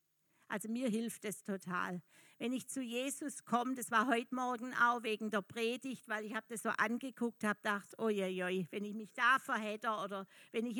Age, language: 50-69, German